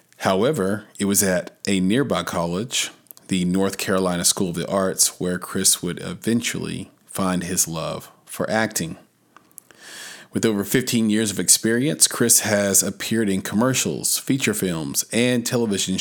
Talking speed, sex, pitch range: 140 wpm, male, 95-110 Hz